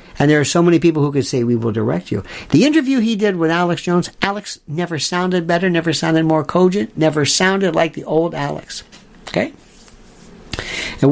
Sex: male